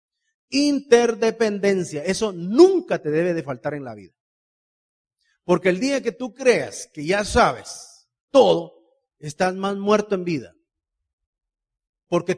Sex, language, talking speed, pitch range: male, Spanish, 125 wpm, 175-250 Hz